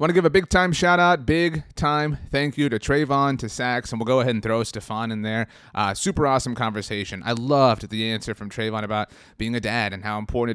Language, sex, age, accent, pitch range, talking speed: English, male, 30-49, American, 105-135 Hz, 220 wpm